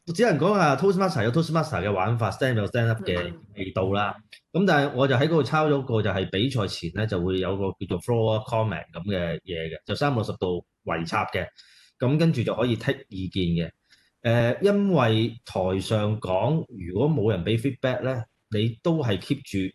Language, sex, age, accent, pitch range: Chinese, male, 20-39, native, 95-130 Hz